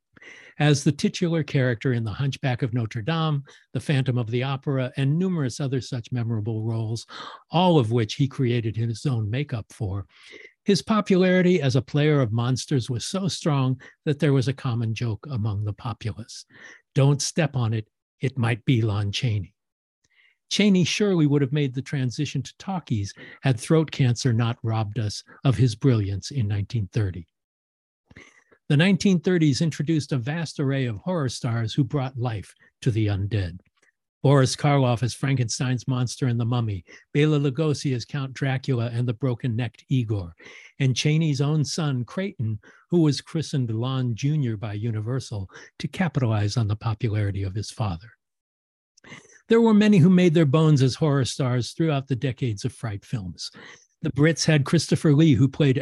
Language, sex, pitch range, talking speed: English, male, 115-150 Hz, 165 wpm